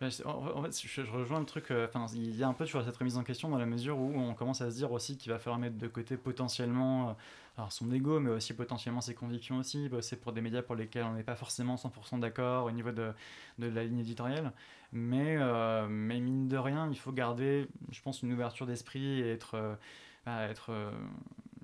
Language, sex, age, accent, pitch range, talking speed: French, male, 20-39, French, 115-130 Hz, 225 wpm